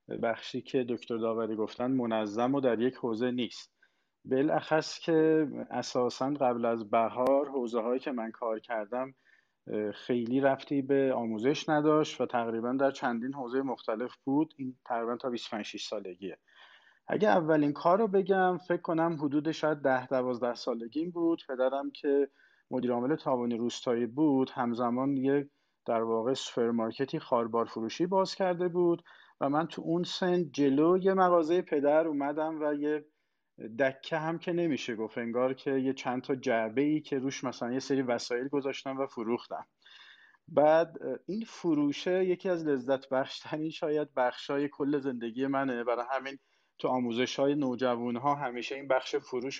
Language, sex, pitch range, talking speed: Persian, male, 120-155 Hz, 150 wpm